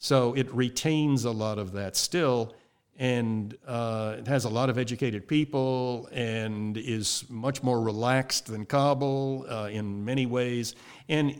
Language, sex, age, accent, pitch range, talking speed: English, male, 60-79, American, 105-130 Hz, 155 wpm